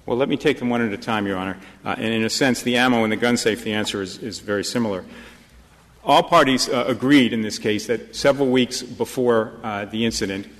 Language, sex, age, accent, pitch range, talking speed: English, male, 40-59, American, 105-130 Hz, 240 wpm